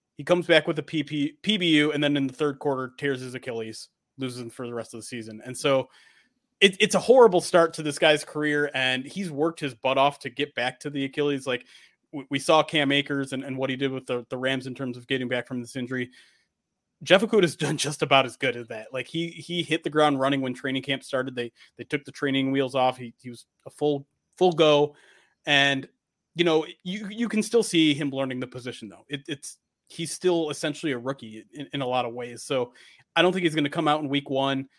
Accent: American